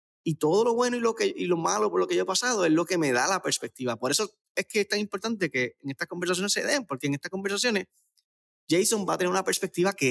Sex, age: male, 20-39